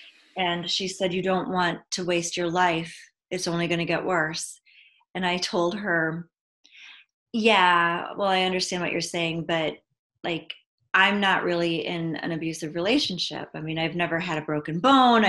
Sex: female